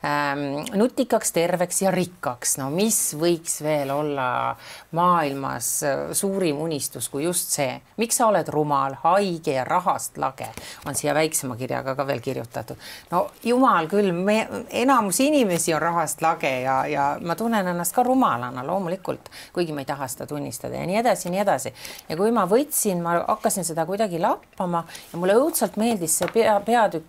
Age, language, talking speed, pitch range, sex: 40-59, English, 165 wpm, 150-215 Hz, female